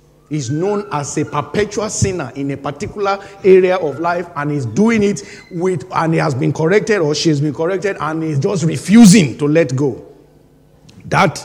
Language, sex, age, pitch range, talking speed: English, male, 50-69, 145-185 Hz, 180 wpm